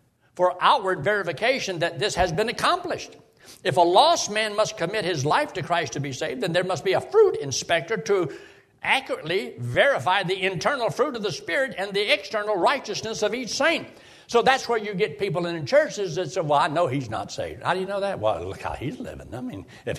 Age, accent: 60-79, American